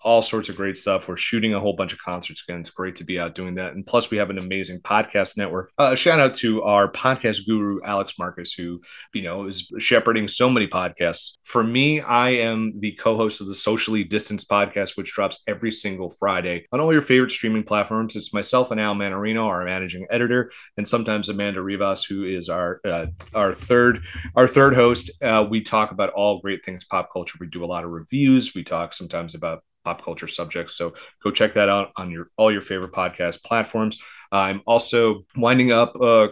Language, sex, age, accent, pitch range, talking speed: English, male, 30-49, American, 95-115 Hz, 215 wpm